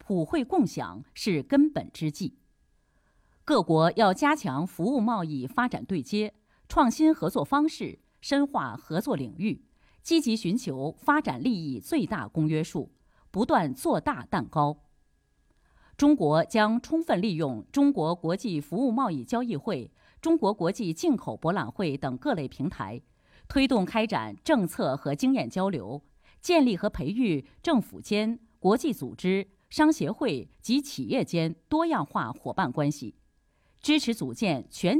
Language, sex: Chinese, female